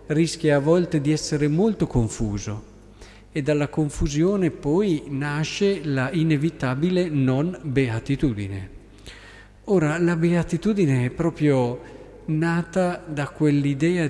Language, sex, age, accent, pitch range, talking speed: Italian, male, 50-69, native, 120-155 Hz, 100 wpm